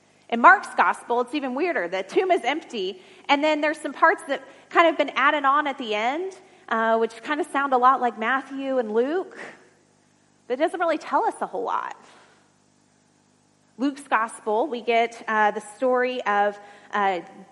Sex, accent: female, American